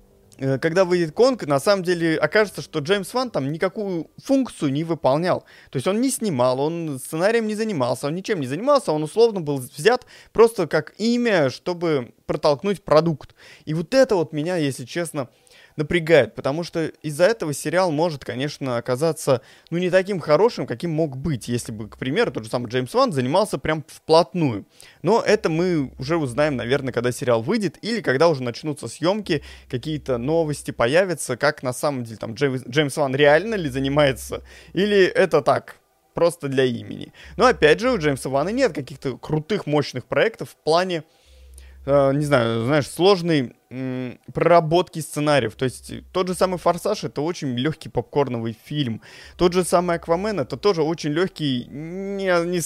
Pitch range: 130-175 Hz